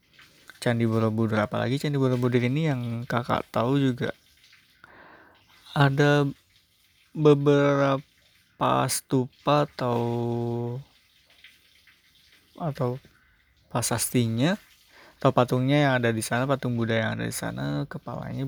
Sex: male